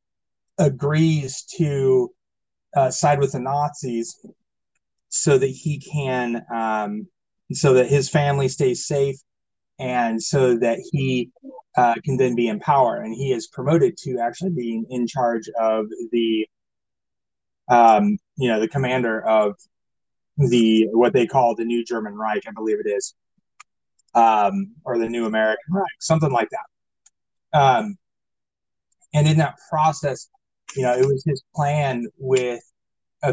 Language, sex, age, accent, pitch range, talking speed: English, male, 30-49, American, 115-155 Hz, 140 wpm